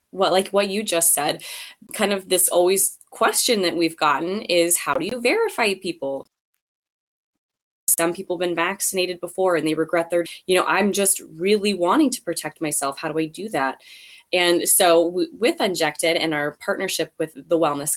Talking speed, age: 185 wpm, 20-39